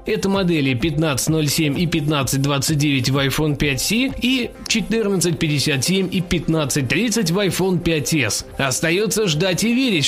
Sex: male